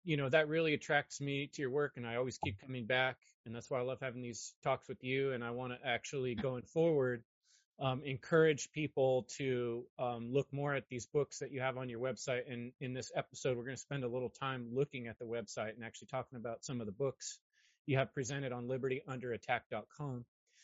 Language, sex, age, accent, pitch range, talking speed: English, male, 30-49, American, 125-140 Hz, 220 wpm